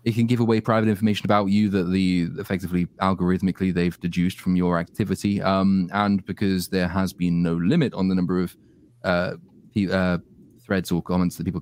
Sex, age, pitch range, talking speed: male, 20-39, 90-110 Hz, 190 wpm